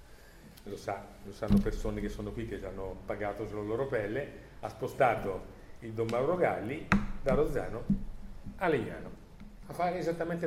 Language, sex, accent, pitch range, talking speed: Italian, male, native, 105-150 Hz, 160 wpm